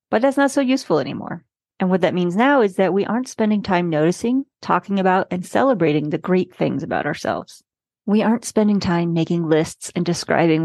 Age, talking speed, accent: 40-59, 195 wpm, American